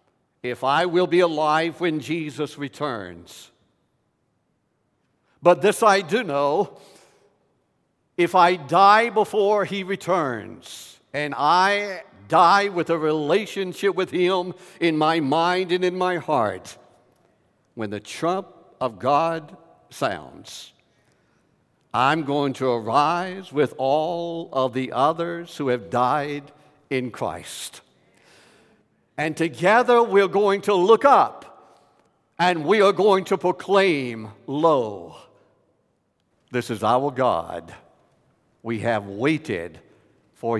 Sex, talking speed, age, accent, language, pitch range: male, 110 wpm, 70-89, American, English, 115-180 Hz